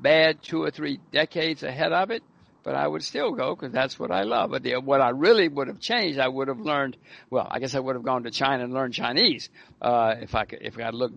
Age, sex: 60-79, male